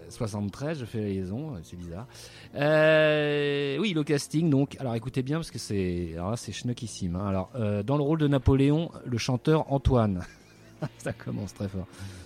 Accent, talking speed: French, 175 wpm